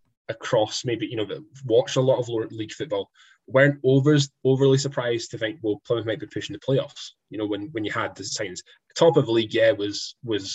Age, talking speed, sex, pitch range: 10-29, 220 wpm, male, 100-145 Hz